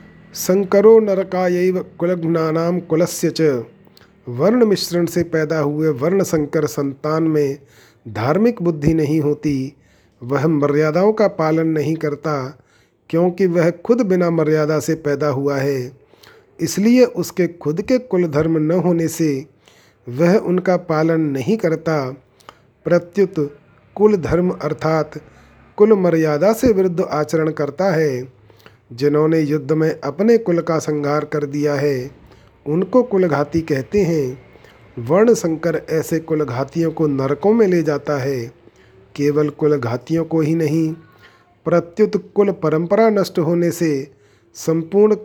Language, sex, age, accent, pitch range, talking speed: Hindi, male, 40-59, native, 145-180 Hz, 125 wpm